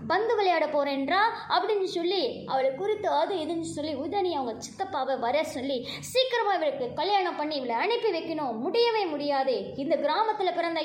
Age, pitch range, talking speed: 20-39, 230-335 Hz, 150 wpm